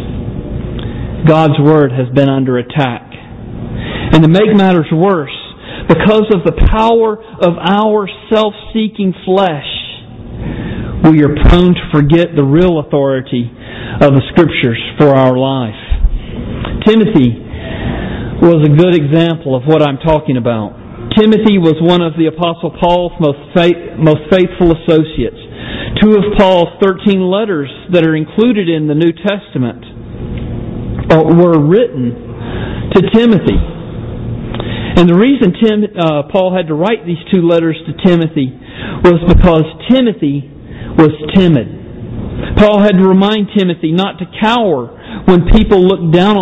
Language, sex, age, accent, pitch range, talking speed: English, male, 40-59, American, 145-190 Hz, 130 wpm